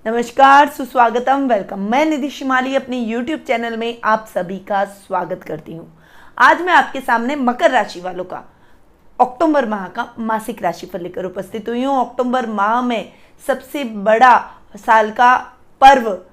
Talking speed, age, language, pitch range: 155 wpm, 20-39, Hindi, 210-270 Hz